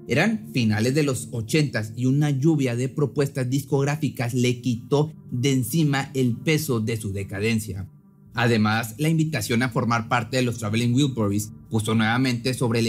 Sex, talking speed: male, 160 wpm